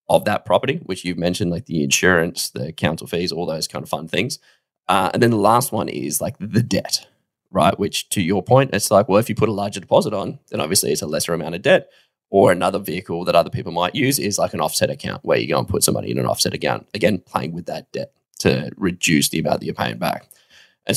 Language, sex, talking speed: English, male, 250 wpm